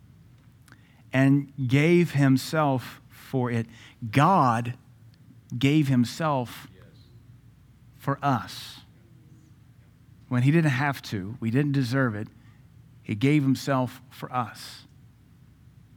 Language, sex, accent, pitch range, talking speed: English, male, American, 125-155 Hz, 90 wpm